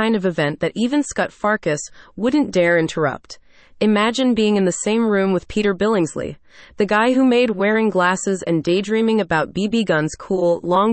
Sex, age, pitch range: female, 30-49, 175-220 Hz